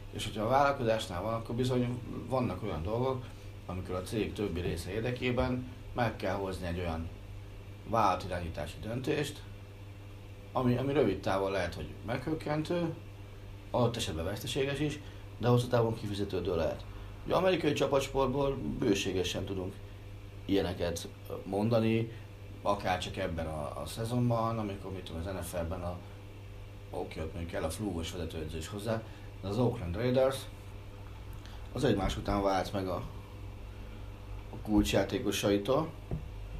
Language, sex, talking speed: Hungarian, male, 120 wpm